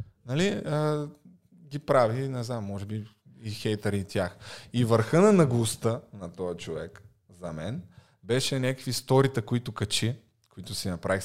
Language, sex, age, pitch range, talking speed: Bulgarian, male, 20-39, 100-125 Hz, 155 wpm